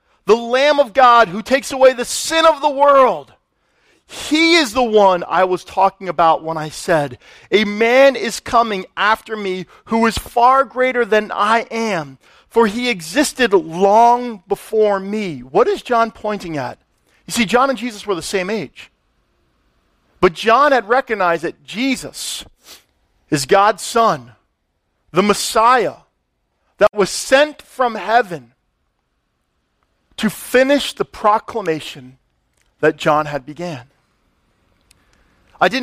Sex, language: male, English